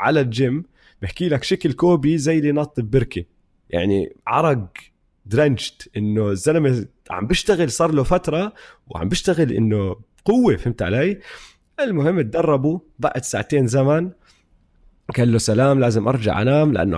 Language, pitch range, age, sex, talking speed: Arabic, 100-140 Hz, 20-39, male, 135 wpm